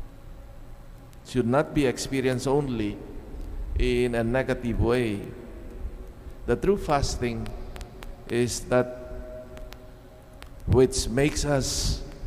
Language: English